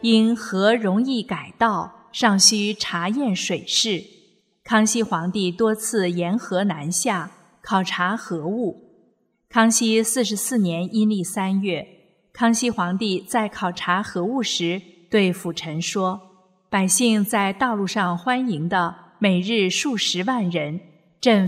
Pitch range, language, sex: 180-225 Hz, Chinese, female